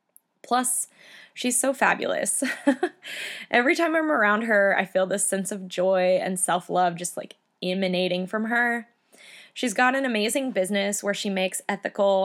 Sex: female